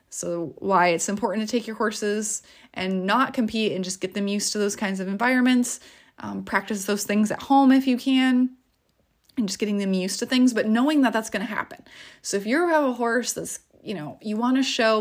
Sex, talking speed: female, 230 wpm